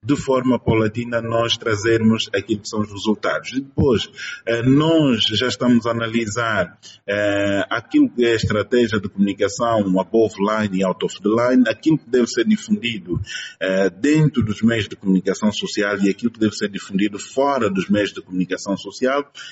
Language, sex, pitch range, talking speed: Portuguese, male, 100-125 Hz, 170 wpm